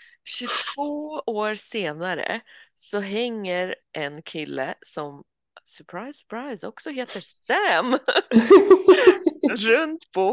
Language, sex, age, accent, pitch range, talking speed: Swedish, female, 30-49, native, 155-250 Hz, 85 wpm